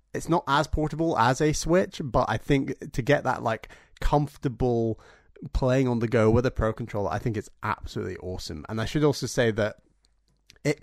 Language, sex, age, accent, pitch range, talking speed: English, male, 30-49, British, 105-130 Hz, 195 wpm